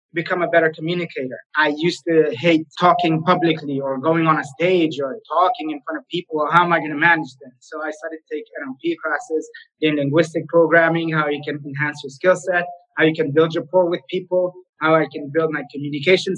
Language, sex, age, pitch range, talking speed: English, male, 20-39, 155-175 Hz, 215 wpm